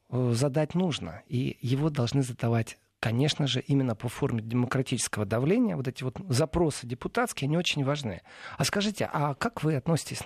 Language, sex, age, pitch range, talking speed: Russian, male, 40-59, 125-160 Hz, 150 wpm